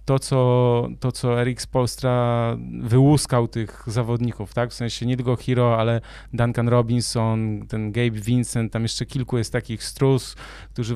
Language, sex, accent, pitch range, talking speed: Polish, male, native, 115-140 Hz, 155 wpm